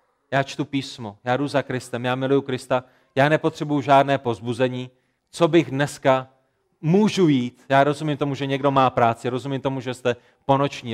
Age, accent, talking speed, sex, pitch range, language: 30-49, native, 170 wpm, male, 130-165 Hz, Czech